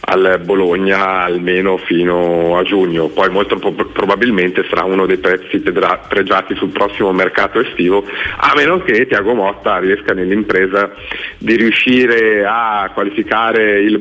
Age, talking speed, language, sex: 40-59, 135 wpm, Italian, male